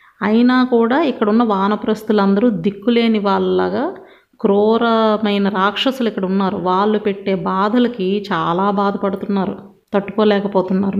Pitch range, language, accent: 195-220 Hz, Telugu, native